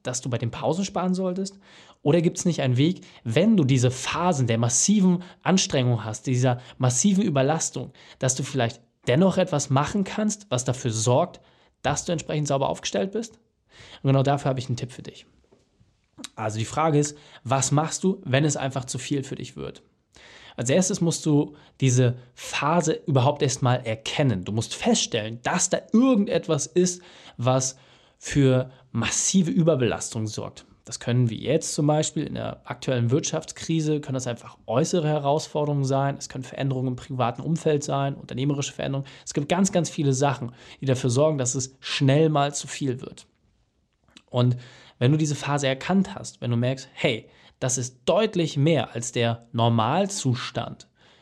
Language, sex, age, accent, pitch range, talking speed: German, male, 20-39, German, 125-165 Hz, 170 wpm